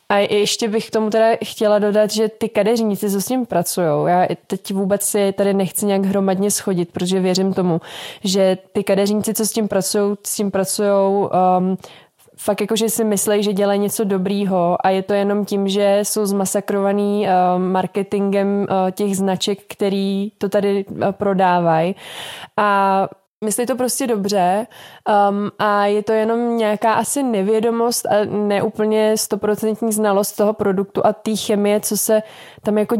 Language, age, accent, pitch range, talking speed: Czech, 20-39, native, 190-210 Hz, 165 wpm